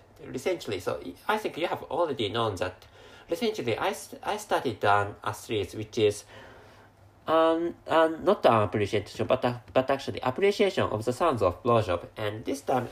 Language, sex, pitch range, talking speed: English, male, 105-155 Hz, 165 wpm